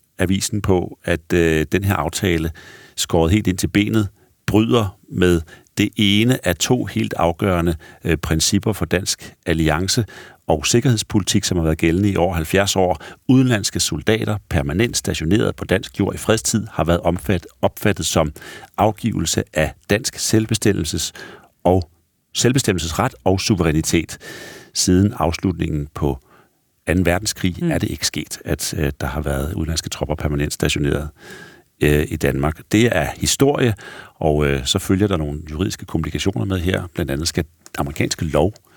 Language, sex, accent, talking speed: Danish, male, native, 150 wpm